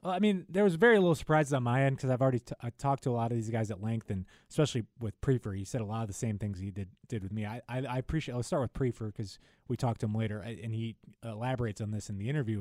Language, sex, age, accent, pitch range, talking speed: English, male, 20-39, American, 110-130 Hz, 305 wpm